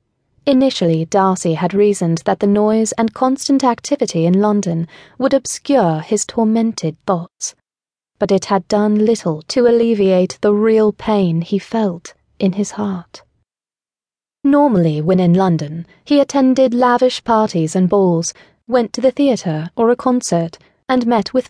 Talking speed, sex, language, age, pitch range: 145 wpm, female, English, 30-49, 180-235 Hz